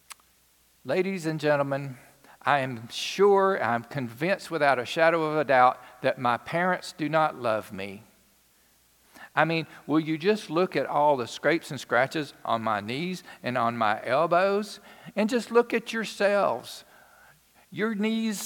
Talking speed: 155 wpm